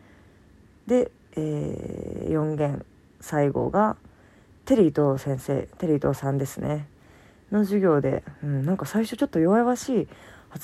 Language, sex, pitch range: Japanese, female, 130-185 Hz